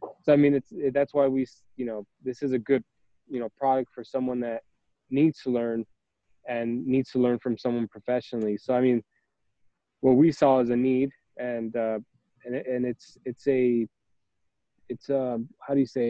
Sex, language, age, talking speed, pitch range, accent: male, English, 20-39, 185 wpm, 115-135 Hz, American